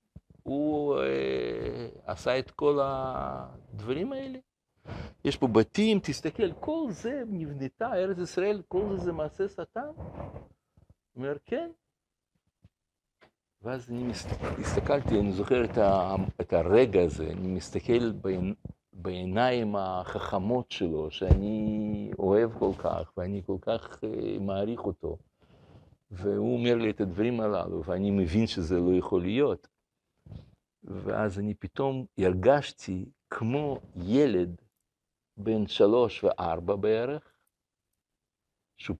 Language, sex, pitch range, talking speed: Hebrew, male, 100-150 Hz, 110 wpm